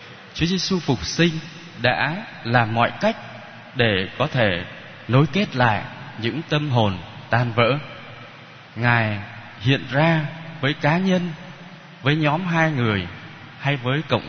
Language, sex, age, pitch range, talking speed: Vietnamese, male, 20-39, 110-150 Hz, 135 wpm